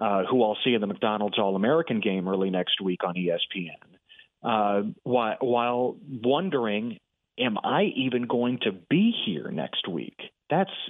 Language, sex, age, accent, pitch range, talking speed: English, male, 40-59, American, 110-135 Hz, 155 wpm